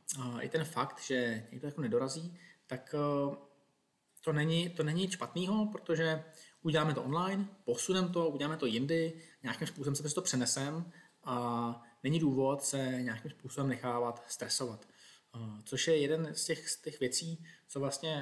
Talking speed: 150 wpm